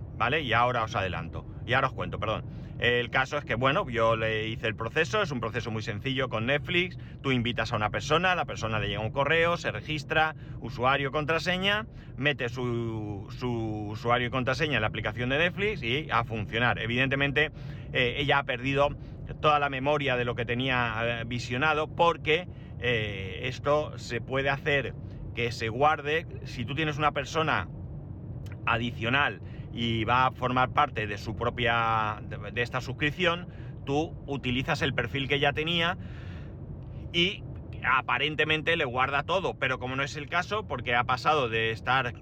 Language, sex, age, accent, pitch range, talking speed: Spanish, male, 30-49, Spanish, 115-140 Hz, 170 wpm